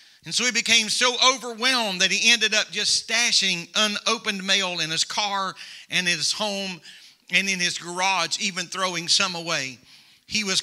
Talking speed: 170 wpm